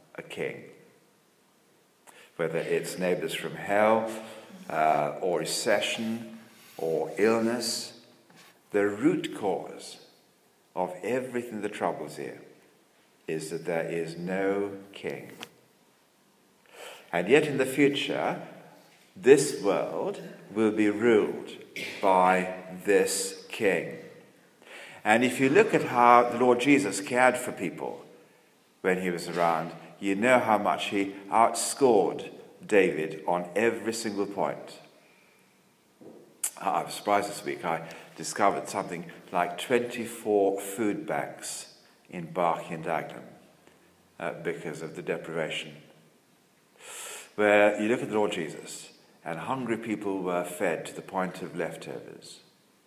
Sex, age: male, 50-69